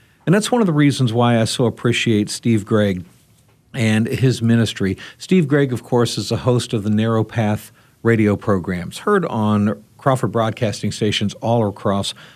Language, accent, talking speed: English, American, 170 wpm